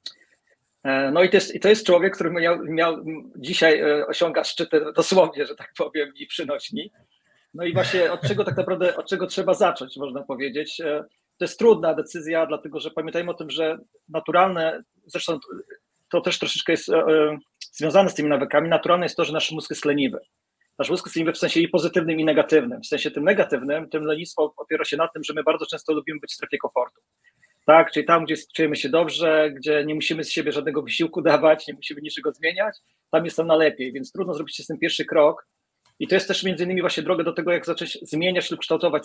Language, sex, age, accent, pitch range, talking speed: Polish, male, 30-49, native, 150-180 Hz, 210 wpm